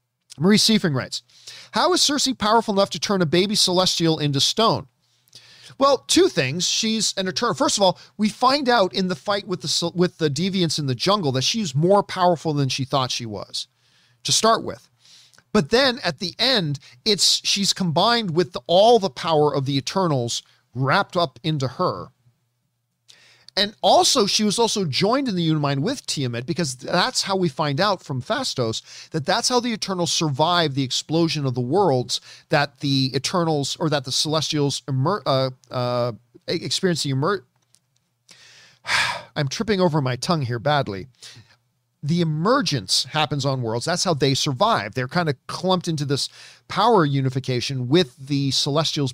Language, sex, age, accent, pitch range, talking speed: English, male, 40-59, American, 135-190 Hz, 165 wpm